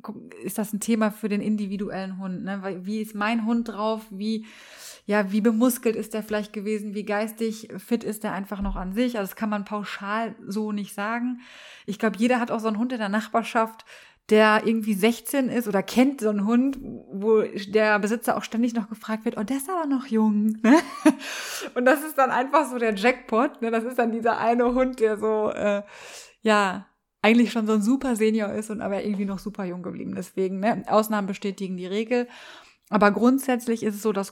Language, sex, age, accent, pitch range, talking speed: German, female, 30-49, German, 205-235 Hz, 210 wpm